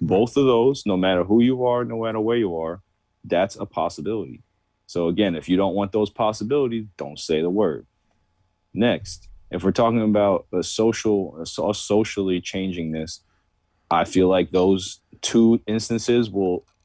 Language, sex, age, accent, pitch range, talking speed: English, male, 30-49, American, 95-115 Hz, 160 wpm